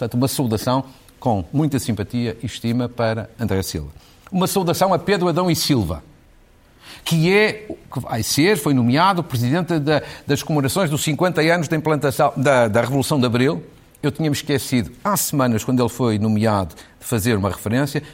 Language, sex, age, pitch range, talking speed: Portuguese, male, 50-69, 120-155 Hz, 170 wpm